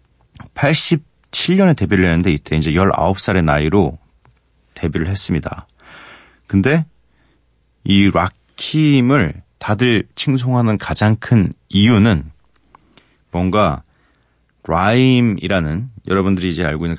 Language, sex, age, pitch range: Korean, male, 40-59, 80-120 Hz